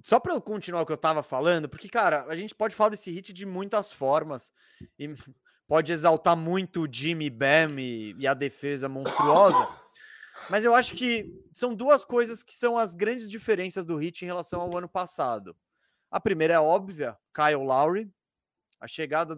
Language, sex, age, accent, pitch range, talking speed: Portuguese, male, 20-39, Brazilian, 160-230 Hz, 185 wpm